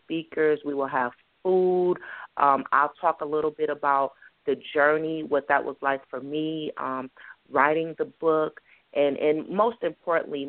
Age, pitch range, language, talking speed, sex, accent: 30-49, 135-165 Hz, English, 160 wpm, female, American